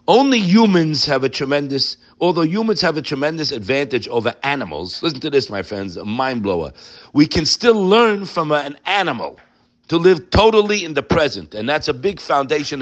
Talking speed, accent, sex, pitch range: 185 wpm, American, male, 150-235 Hz